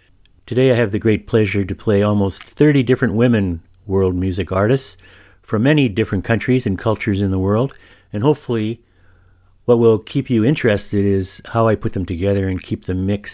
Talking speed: 185 wpm